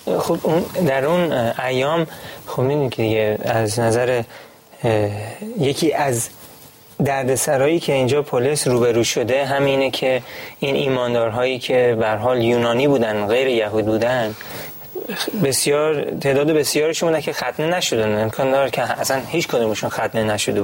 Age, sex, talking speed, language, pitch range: 30-49, male, 130 wpm, Persian, 115-145 Hz